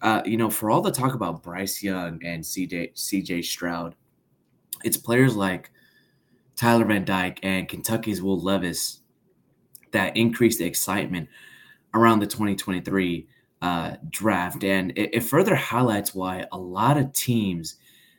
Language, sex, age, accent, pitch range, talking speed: English, male, 20-39, American, 90-115 Hz, 140 wpm